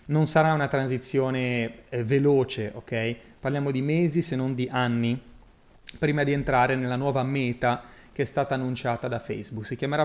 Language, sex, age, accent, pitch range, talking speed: Italian, male, 30-49, native, 125-160 Hz, 165 wpm